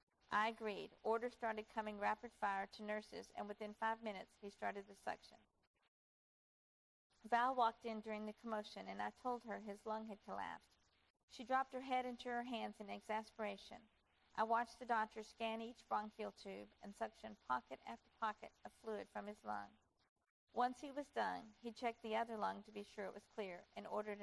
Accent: American